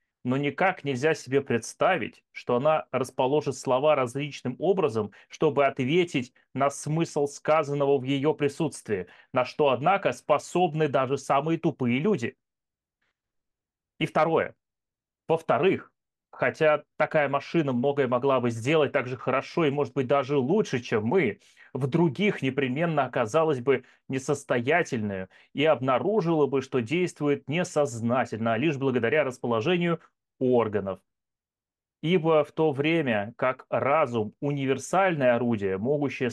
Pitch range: 125-155 Hz